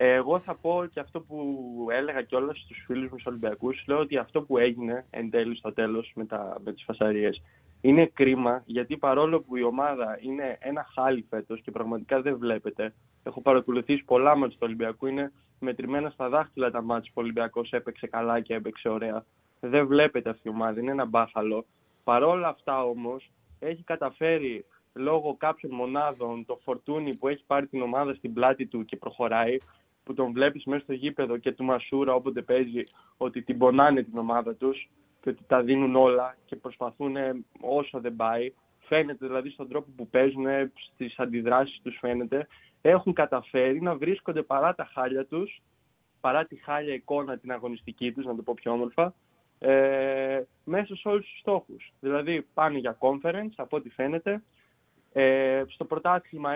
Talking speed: 170 wpm